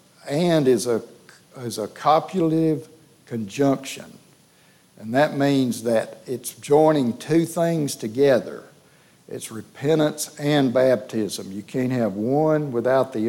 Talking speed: 115 wpm